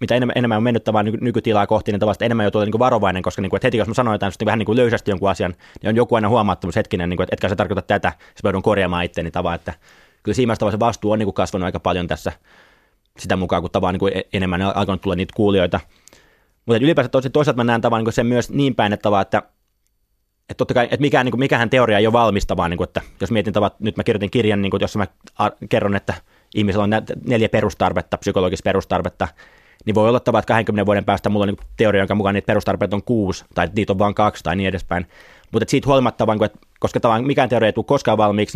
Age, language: 20-39, Finnish